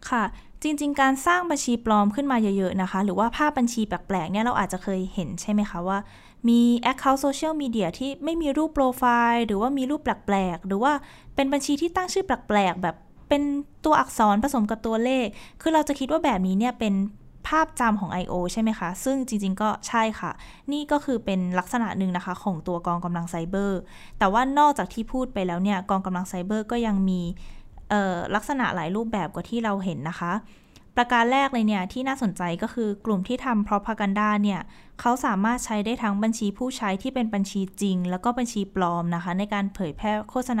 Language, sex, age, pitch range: Thai, female, 20-39, 190-255 Hz